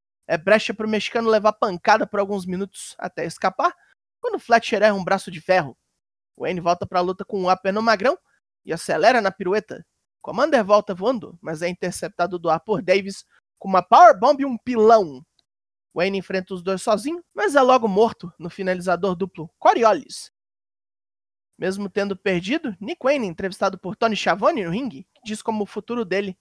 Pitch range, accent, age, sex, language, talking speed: 180-235 Hz, Brazilian, 20-39, male, Portuguese, 180 wpm